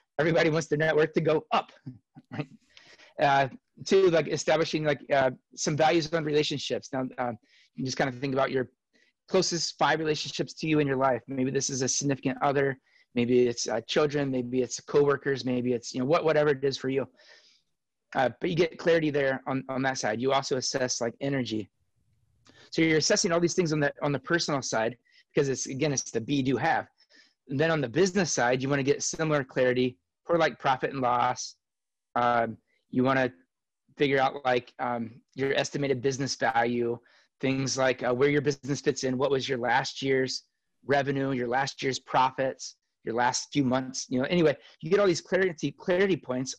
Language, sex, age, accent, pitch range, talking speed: English, male, 30-49, American, 130-155 Hz, 200 wpm